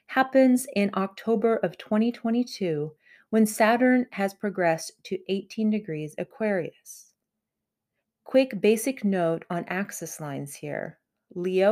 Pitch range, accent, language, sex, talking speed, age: 175-225 Hz, American, English, female, 110 wpm, 30-49